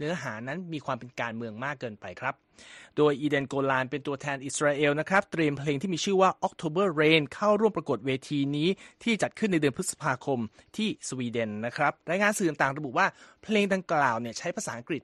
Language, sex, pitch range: Thai, male, 125-170 Hz